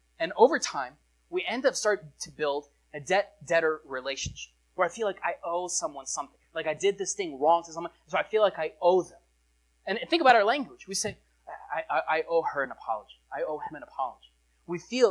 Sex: male